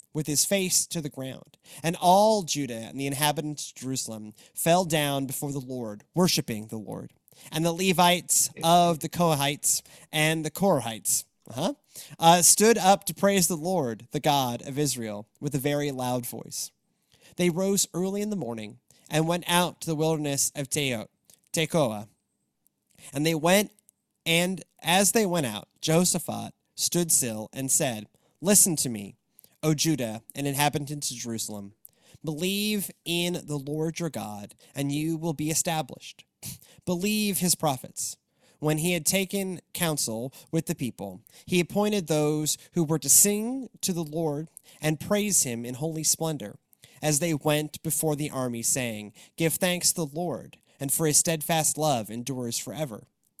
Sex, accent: male, American